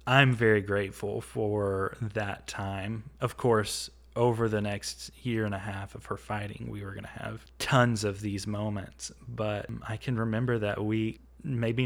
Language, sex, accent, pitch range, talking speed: English, male, American, 100-115 Hz, 170 wpm